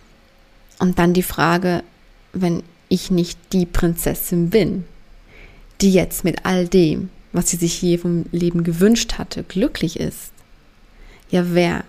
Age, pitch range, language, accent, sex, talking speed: 20-39, 175-195 Hz, German, German, female, 135 wpm